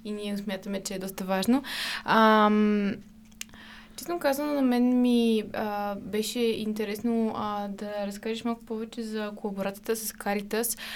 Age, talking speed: 20-39, 130 wpm